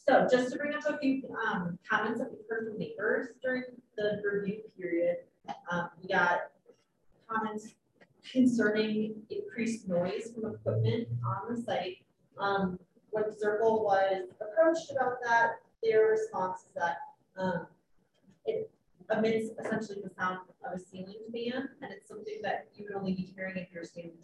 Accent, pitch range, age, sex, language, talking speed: American, 185-240 Hz, 30-49, female, English, 155 wpm